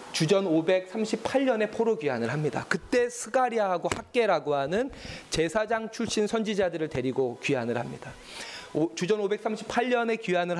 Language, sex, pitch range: Korean, male, 170-250 Hz